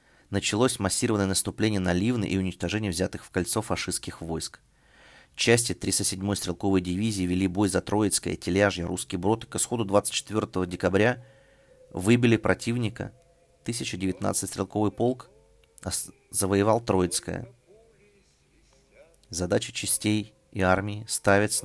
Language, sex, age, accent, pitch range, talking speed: Russian, male, 30-49, native, 95-115 Hz, 115 wpm